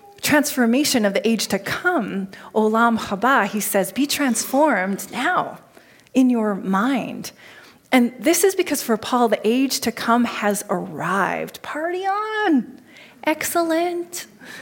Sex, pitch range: female, 200-265 Hz